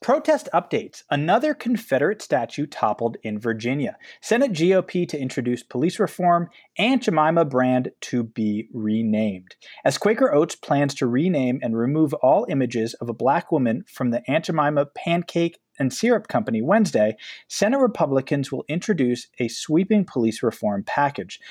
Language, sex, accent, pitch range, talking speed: English, male, American, 125-185 Hz, 145 wpm